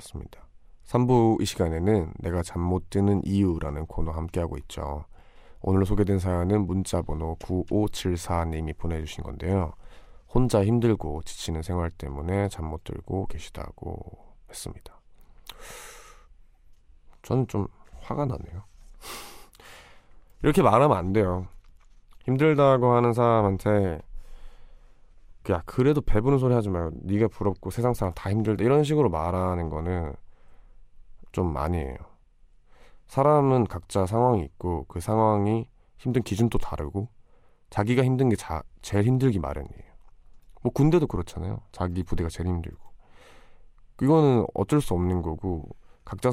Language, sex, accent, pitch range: Korean, male, native, 80-110 Hz